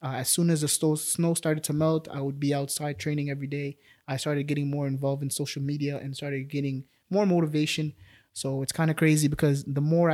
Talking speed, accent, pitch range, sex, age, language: 220 wpm, American, 135-155 Hz, male, 20-39, English